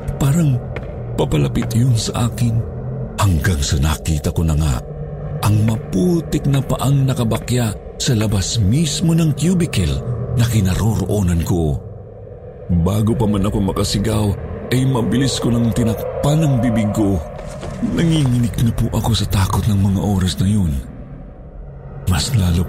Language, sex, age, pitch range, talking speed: Filipino, male, 50-69, 90-140 Hz, 130 wpm